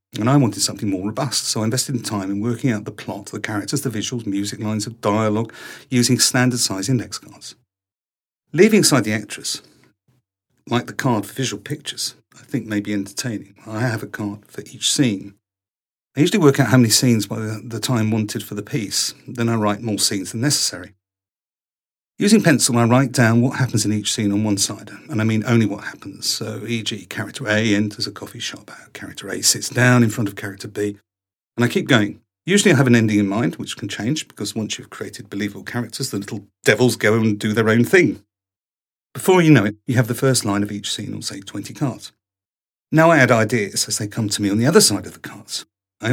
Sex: male